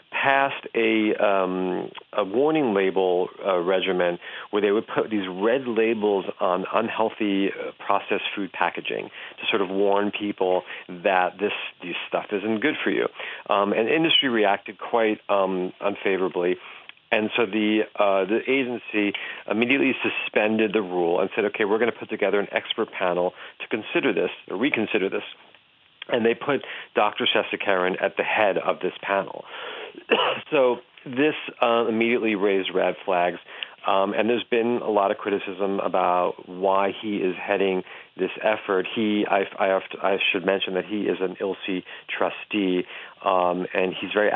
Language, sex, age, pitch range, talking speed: English, male, 40-59, 95-115 Hz, 160 wpm